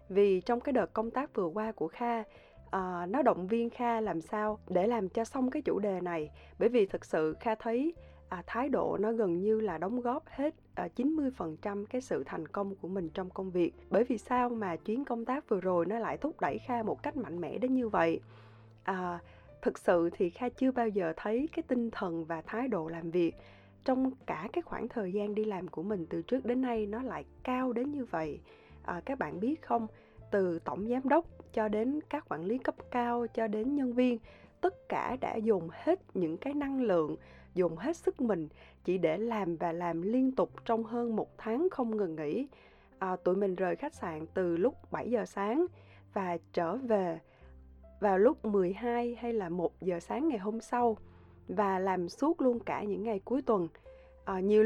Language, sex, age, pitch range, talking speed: Vietnamese, female, 20-39, 180-250 Hz, 205 wpm